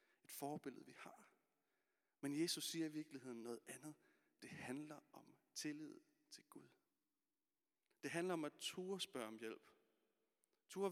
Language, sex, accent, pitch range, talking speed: Danish, male, native, 125-160 Hz, 135 wpm